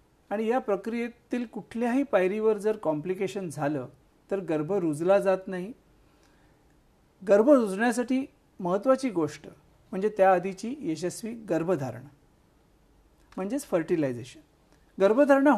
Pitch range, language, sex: 165-220 Hz, Marathi, male